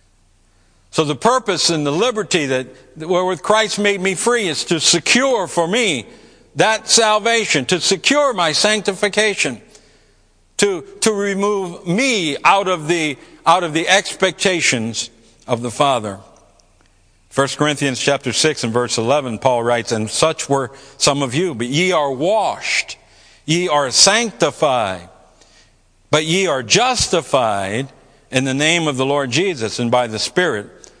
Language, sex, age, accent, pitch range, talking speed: English, male, 60-79, American, 135-225 Hz, 145 wpm